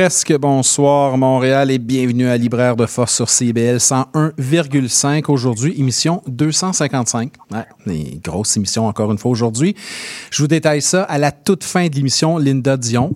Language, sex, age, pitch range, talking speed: French, male, 40-59, 115-145 Hz, 160 wpm